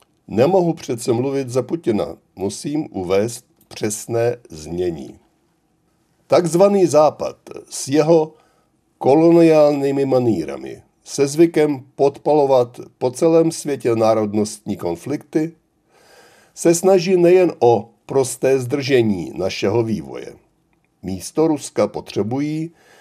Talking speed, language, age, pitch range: 90 wpm, Czech, 60-79, 115-160 Hz